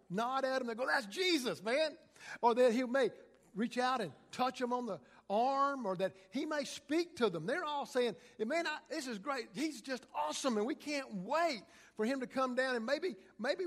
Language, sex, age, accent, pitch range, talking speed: English, male, 50-69, American, 185-260 Hz, 215 wpm